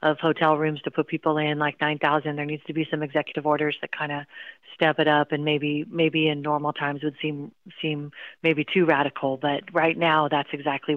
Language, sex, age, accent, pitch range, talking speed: English, female, 40-59, American, 150-165 Hz, 215 wpm